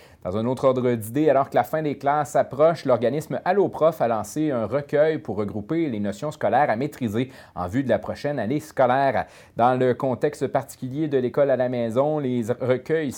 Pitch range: 120-155 Hz